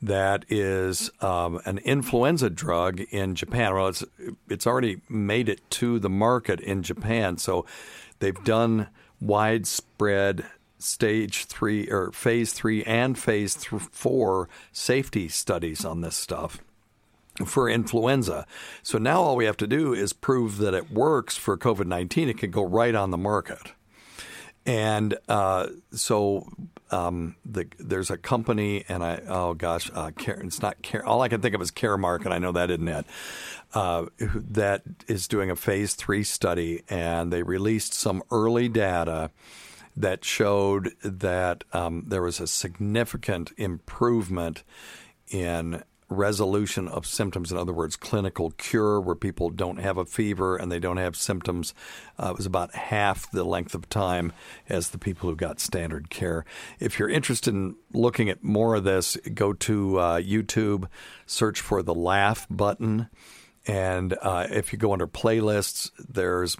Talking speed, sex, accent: 155 wpm, male, American